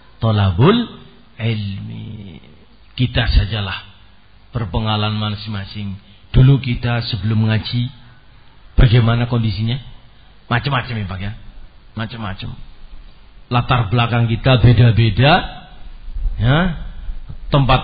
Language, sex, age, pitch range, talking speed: Indonesian, male, 40-59, 110-155 Hz, 75 wpm